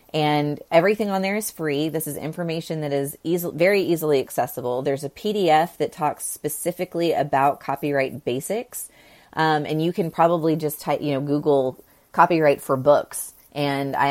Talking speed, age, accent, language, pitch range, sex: 165 wpm, 30-49, American, English, 135-165 Hz, female